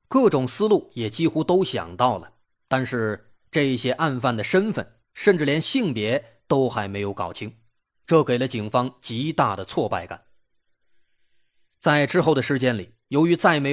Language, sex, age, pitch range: Chinese, male, 20-39, 120-165 Hz